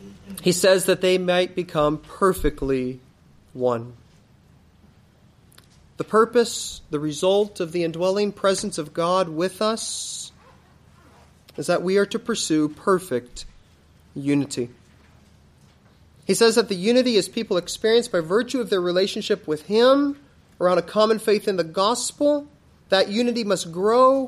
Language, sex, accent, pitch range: English, male, American, 150-220 Hz